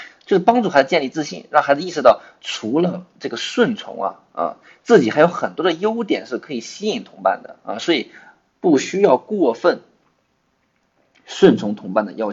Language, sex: Chinese, male